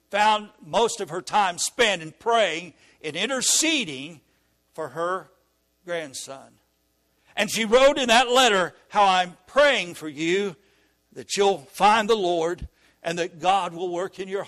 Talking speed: 150 wpm